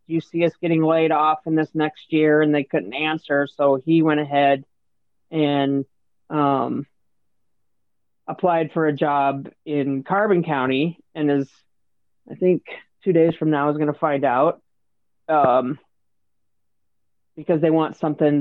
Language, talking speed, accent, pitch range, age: English, 145 wpm, American, 125-155 Hz, 30-49